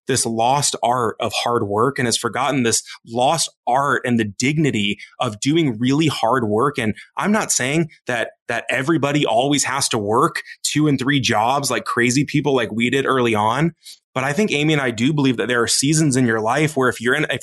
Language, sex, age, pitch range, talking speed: English, male, 20-39, 120-155 Hz, 215 wpm